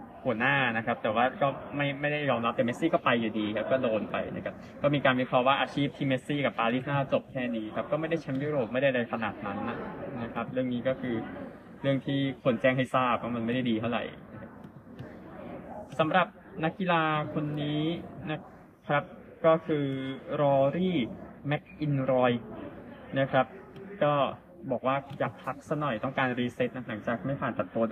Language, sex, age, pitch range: Thai, male, 20-39, 120-150 Hz